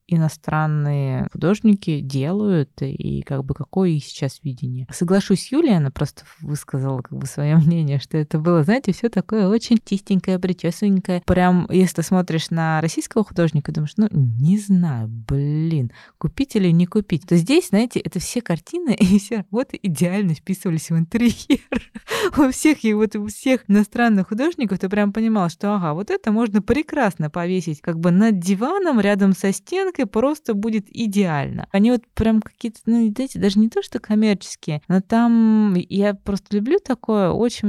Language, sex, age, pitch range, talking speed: Russian, female, 20-39, 165-220 Hz, 160 wpm